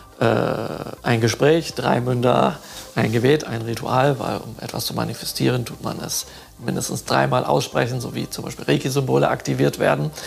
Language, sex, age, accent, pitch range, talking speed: German, male, 50-69, German, 120-150 Hz, 150 wpm